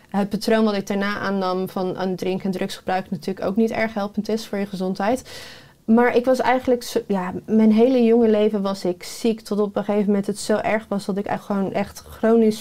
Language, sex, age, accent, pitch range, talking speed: Dutch, female, 20-39, Dutch, 200-230 Hz, 215 wpm